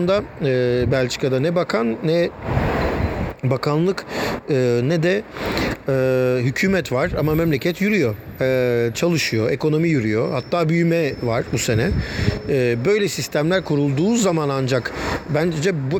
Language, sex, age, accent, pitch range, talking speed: Turkish, male, 50-69, native, 125-155 Hz, 100 wpm